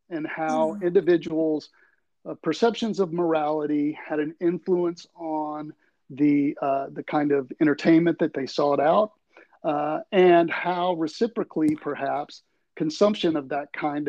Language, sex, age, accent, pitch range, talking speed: English, male, 40-59, American, 145-175 Hz, 130 wpm